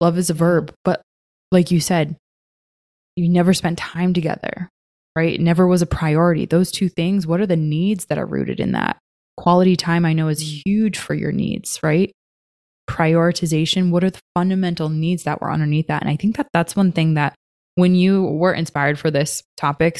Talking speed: 200 wpm